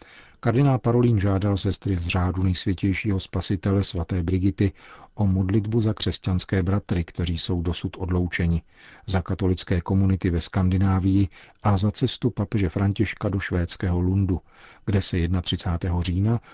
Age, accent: 50-69, native